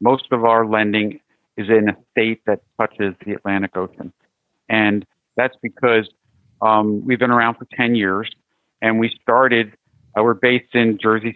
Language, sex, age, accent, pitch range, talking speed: English, male, 50-69, American, 110-125 Hz, 165 wpm